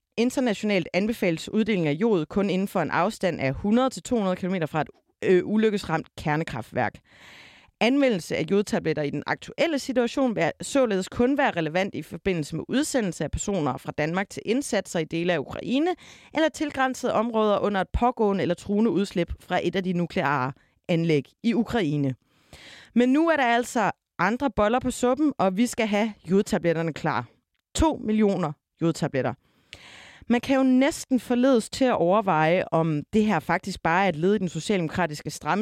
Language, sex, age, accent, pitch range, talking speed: Danish, female, 30-49, native, 165-235 Hz, 165 wpm